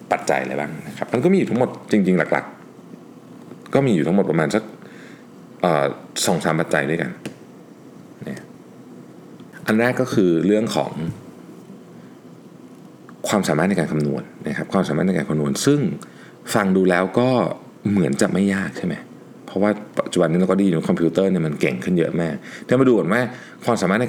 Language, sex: Thai, male